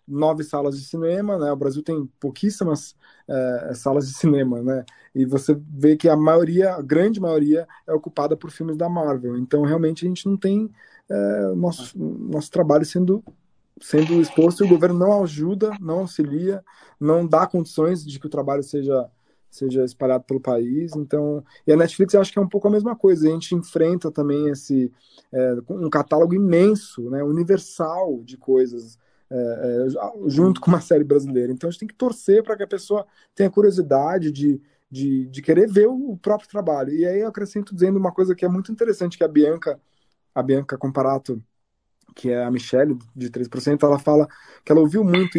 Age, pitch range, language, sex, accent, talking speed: 20-39, 135-180 Hz, Portuguese, male, Brazilian, 185 wpm